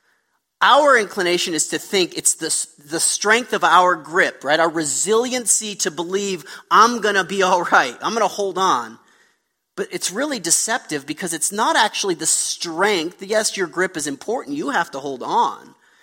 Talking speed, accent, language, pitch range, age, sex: 180 wpm, American, English, 145-195 Hz, 30-49, male